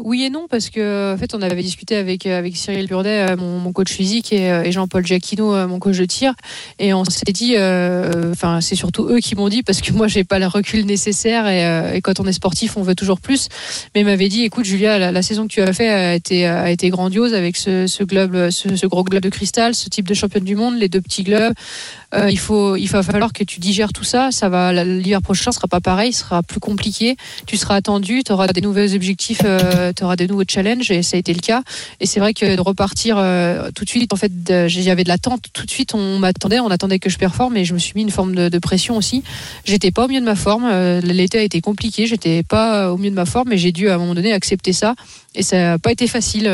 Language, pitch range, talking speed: French, 185-215 Hz, 270 wpm